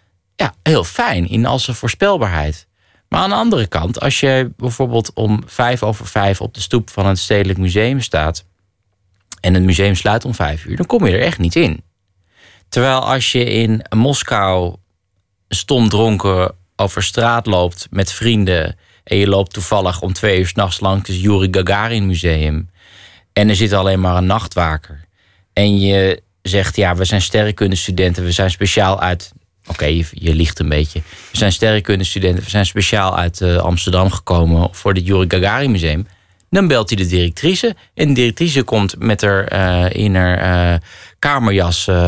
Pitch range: 90-110 Hz